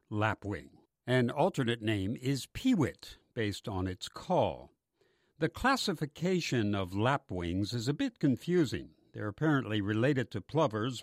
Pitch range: 105-150 Hz